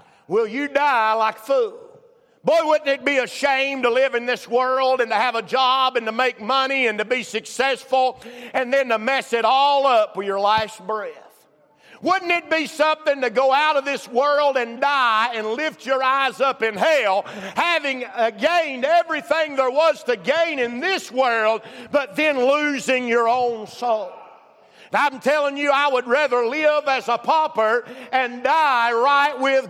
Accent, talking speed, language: American, 180 wpm, English